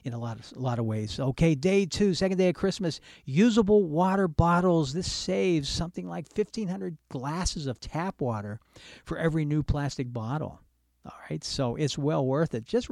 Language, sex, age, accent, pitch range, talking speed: English, male, 50-69, American, 125-175 Hz, 185 wpm